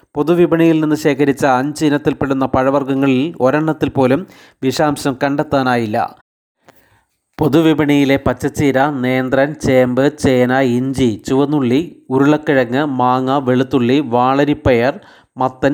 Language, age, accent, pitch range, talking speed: Malayalam, 30-49, native, 130-145 Hz, 85 wpm